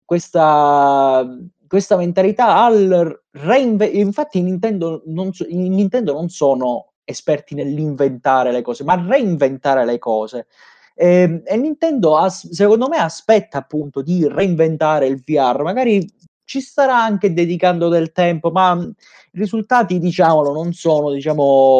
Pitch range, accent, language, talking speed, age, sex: 140-180 Hz, native, Italian, 115 wpm, 20-39, male